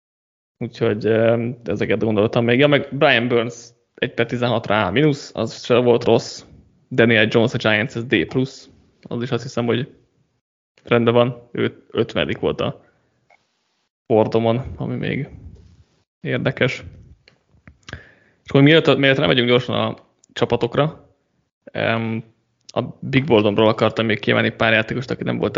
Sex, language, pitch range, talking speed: male, Hungarian, 110-130 Hz, 130 wpm